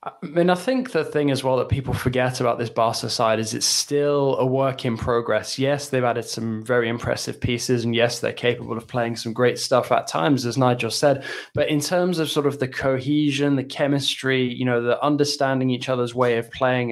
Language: English